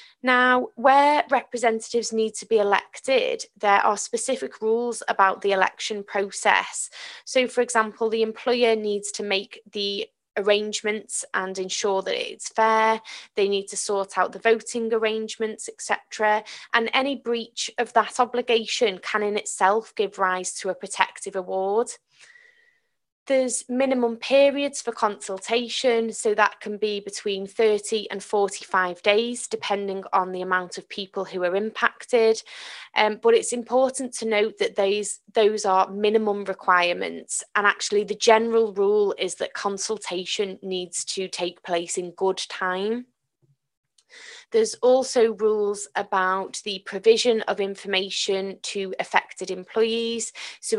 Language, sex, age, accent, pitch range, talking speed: English, female, 20-39, British, 195-235 Hz, 135 wpm